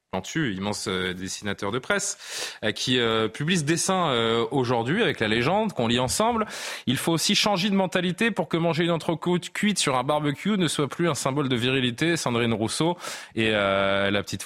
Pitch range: 110-165 Hz